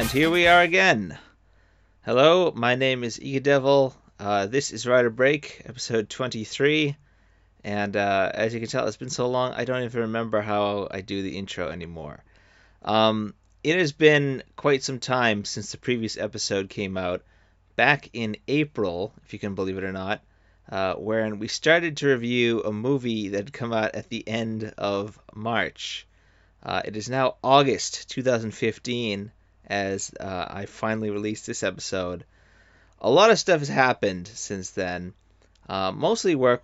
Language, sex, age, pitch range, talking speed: English, male, 30-49, 95-125 Hz, 165 wpm